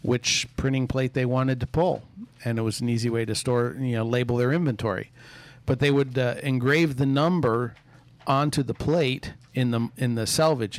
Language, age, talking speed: English, 50-69, 195 wpm